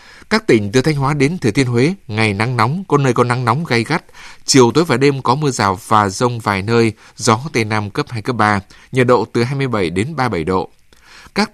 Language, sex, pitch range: Vietnamese, male, 105-135 Hz